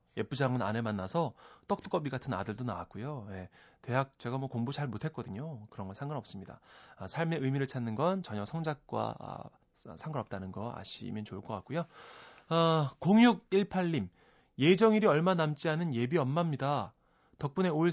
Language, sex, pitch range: Korean, male, 110-165 Hz